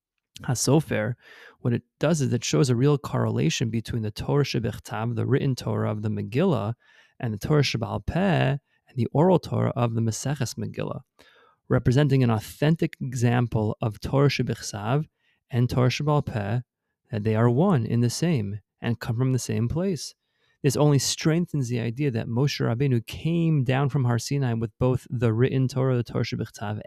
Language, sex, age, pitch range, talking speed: English, male, 30-49, 115-145 Hz, 175 wpm